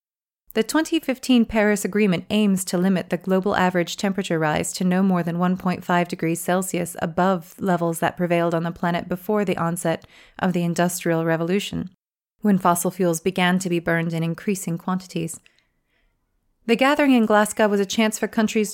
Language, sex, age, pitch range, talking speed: English, female, 30-49, 175-210 Hz, 165 wpm